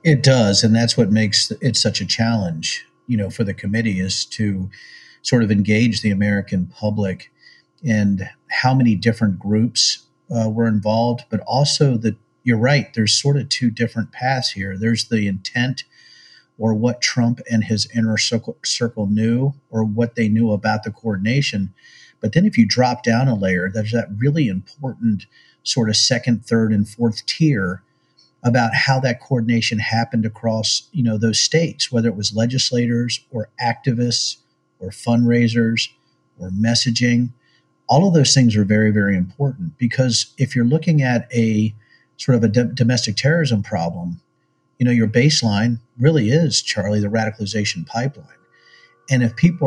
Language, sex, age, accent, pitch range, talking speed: English, male, 50-69, American, 110-125 Hz, 160 wpm